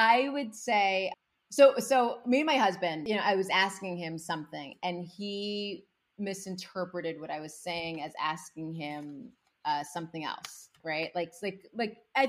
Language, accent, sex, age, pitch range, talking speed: English, American, female, 30-49, 175-225 Hz, 165 wpm